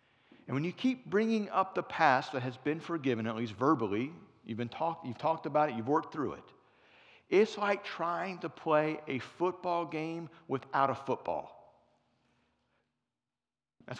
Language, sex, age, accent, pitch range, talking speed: English, male, 50-69, American, 120-160 Hz, 165 wpm